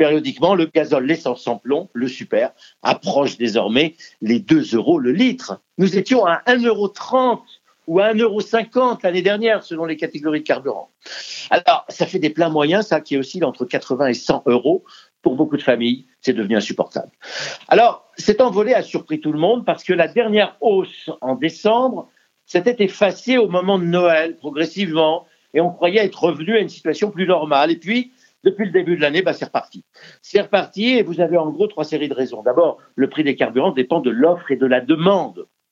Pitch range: 160-235 Hz